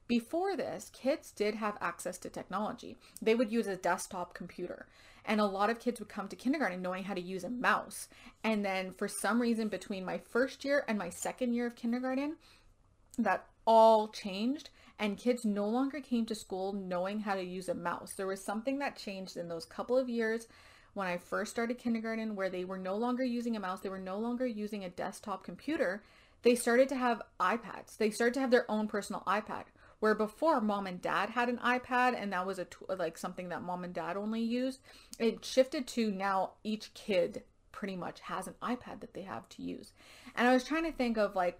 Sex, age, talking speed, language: female, 20-39, 215 wpm, English